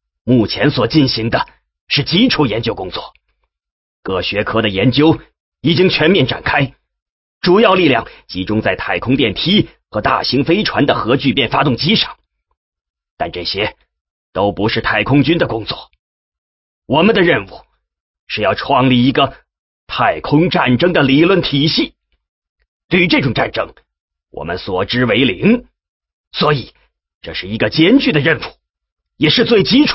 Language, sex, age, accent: English, male, 30-49, Chinese